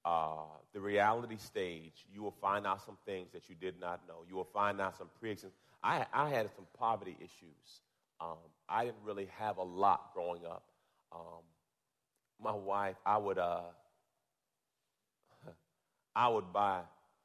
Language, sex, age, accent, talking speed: English, male, 40-59, American, 155 wpm